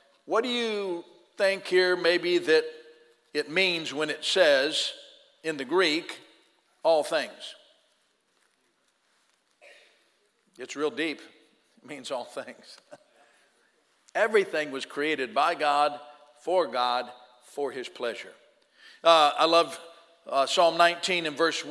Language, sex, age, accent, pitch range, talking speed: English, male, 50-69, American, 140-180 Hz, 115 wpm